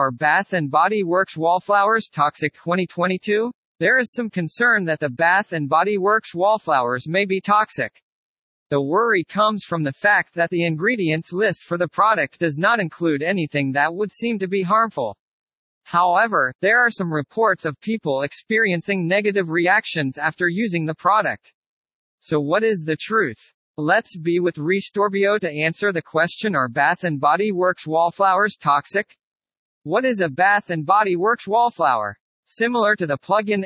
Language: English